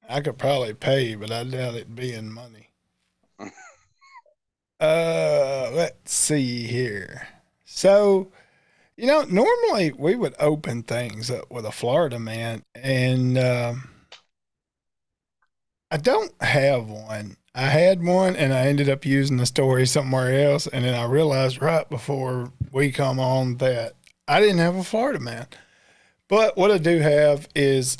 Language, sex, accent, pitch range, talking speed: English, male, American, 120-155 Hz, 145 wpm